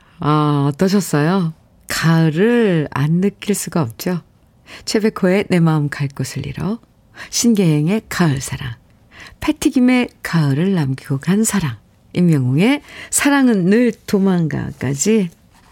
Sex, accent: female, native